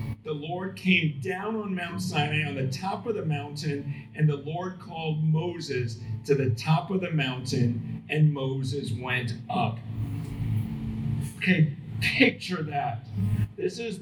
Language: English